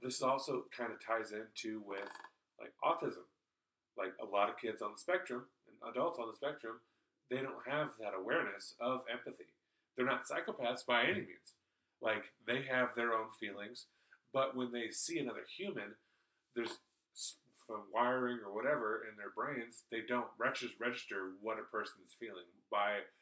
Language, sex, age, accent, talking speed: English, male, 30-49, American, 165 wpm